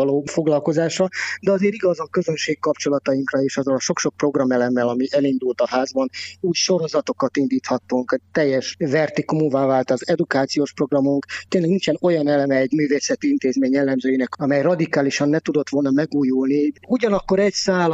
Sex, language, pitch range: male, Hungarian, 130-155 Hz